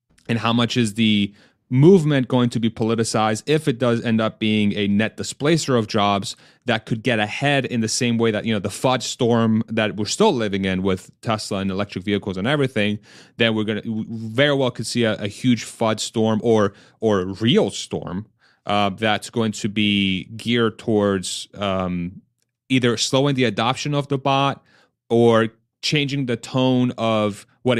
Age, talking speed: 30-49, 185 wpm